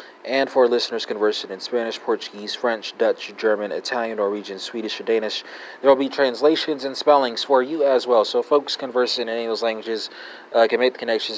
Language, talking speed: English, 195 wpm